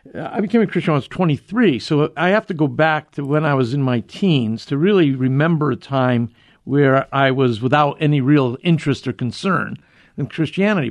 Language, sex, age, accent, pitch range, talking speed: English, male, 50-69, American, 135-185 Hz, 205 wpm